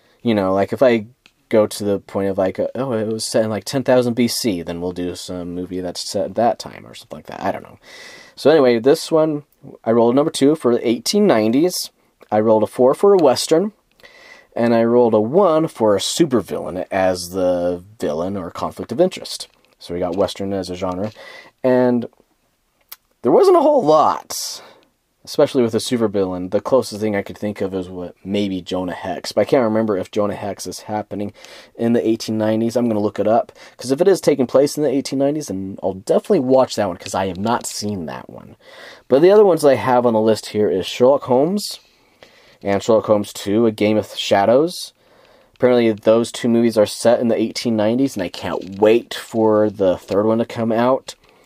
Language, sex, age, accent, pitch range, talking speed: English, male, 30-49, American, 100-125 Hz, 210 wpm